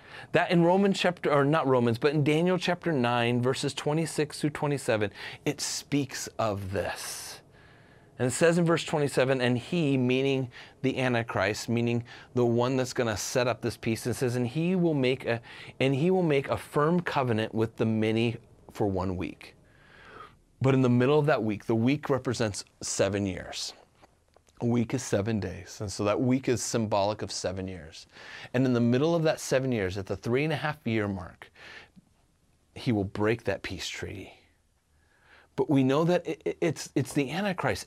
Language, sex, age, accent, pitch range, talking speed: English, male, 30-49, American, 110-150 Hz, 185 wpm